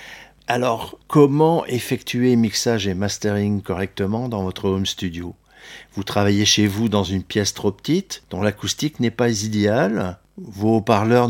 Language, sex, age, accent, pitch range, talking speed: French, male, 50-69, French, 100-120 Hz, 145 wpm